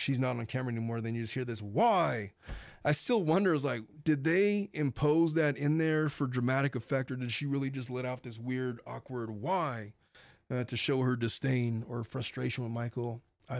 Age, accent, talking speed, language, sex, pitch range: 20-39, American, 205 wpm, English, male, 115-135 Hz